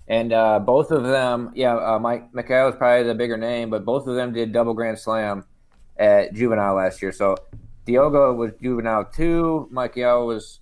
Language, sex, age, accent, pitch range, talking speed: English, male, 20-39, American, 110-125 Hz, 185 wpm